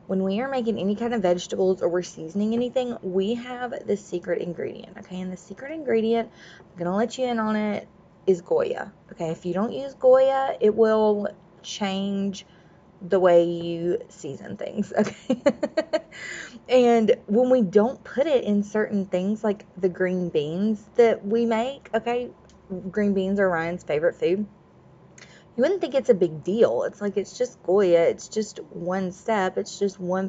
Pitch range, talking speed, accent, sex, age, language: 180-230 Hz, 175 wpm, American, female, 20-39, English